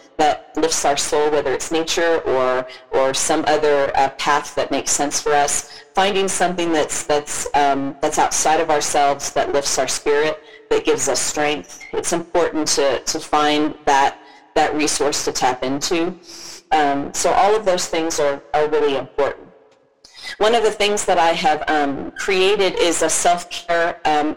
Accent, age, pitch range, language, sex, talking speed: American, 40-59, 145-180 Hz, English, female, 170 wpm